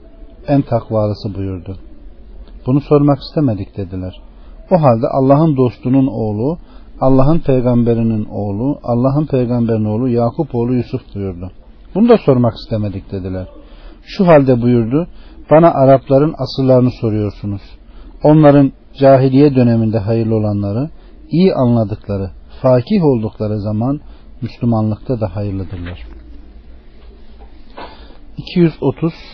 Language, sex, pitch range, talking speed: Turkish, male, 105-140 Hz, 100 wpm